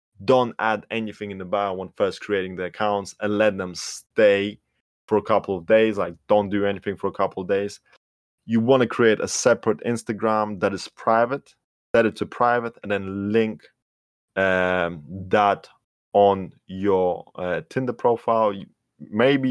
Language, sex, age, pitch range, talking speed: English, male, 20-39, 95-110 Hz, 165 wpm